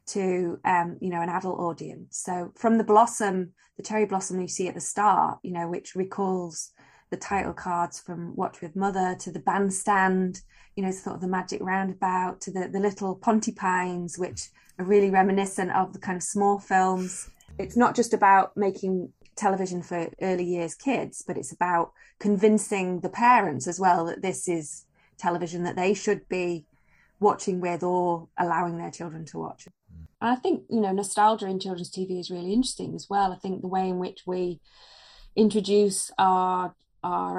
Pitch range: 175-195 Hz